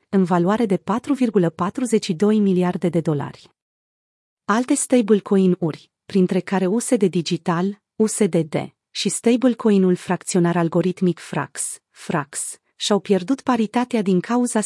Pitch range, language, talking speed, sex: 180-230 Hz, Romanian, 100 wpm, female